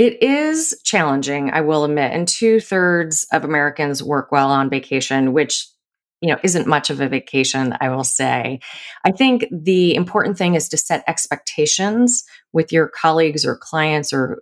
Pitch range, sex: 145-175 Hz, female